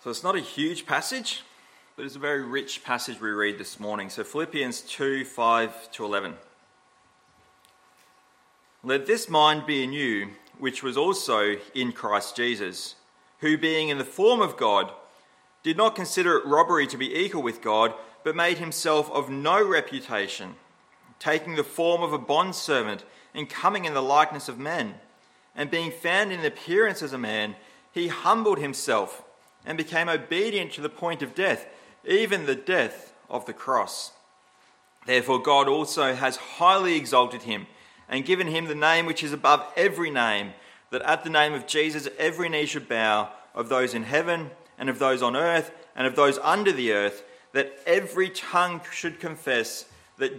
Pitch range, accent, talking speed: 125-170 Hz, Australian, 170 wpm